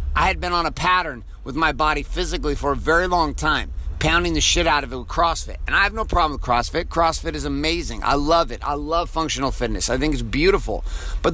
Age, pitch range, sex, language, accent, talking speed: 50-69, 125-170 Hz, male, English, American, 240 wpm